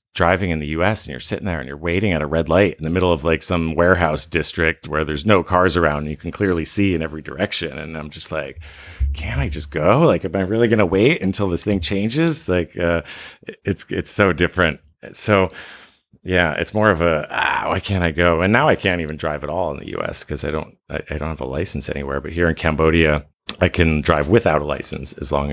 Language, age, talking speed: English, 30-49, 245 wpm